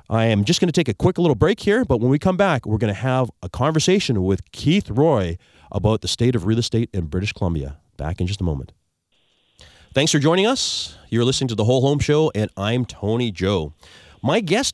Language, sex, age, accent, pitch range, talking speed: English, male, 30-49, American, 95-135 Hz, 230 wpm